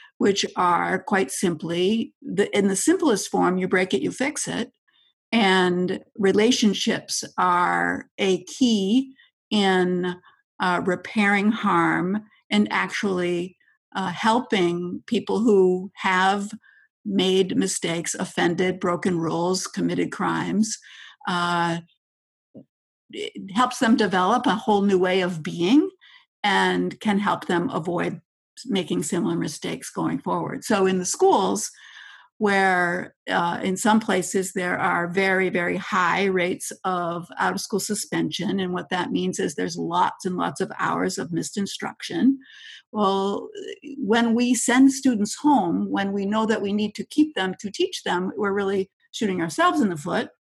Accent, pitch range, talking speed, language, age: American, 180-235 Hz, 135 wpm, English, 50-69